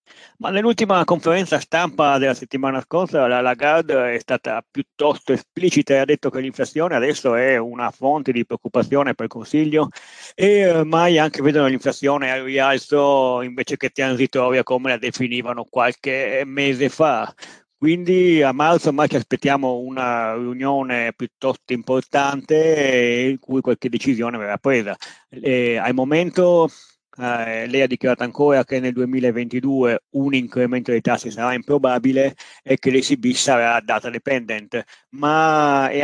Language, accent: English, Italian